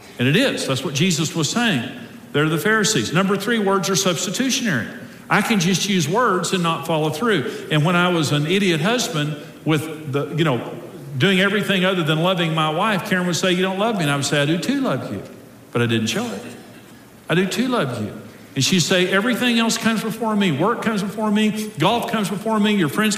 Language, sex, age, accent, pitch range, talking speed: English, male, 50-69, American, 165-220 Hz, 225 wpm